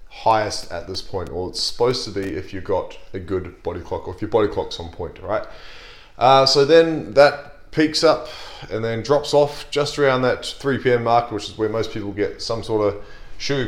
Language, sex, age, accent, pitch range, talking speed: English, male, 20-39, Australian, 105-140 Hz, 220 wpm